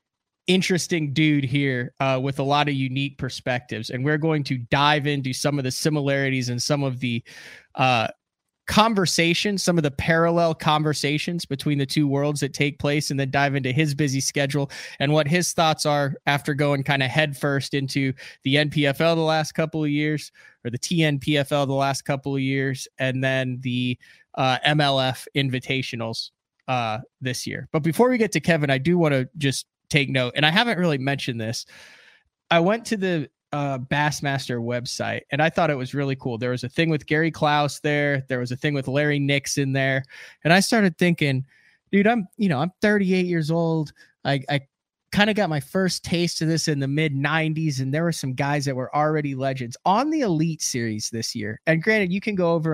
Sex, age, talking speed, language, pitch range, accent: male, 20-39, 200 wpm, English, 135-165 Hz, American